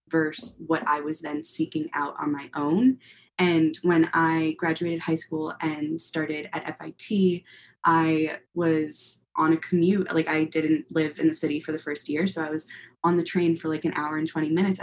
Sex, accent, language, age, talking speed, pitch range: female, American, English, 20-39, 200 wpm, 150-165 Hz